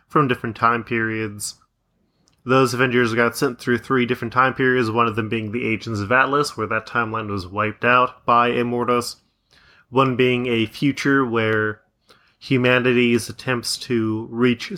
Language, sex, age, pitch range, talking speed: English, male, 20-39, 110-125 Hz, 155 wpm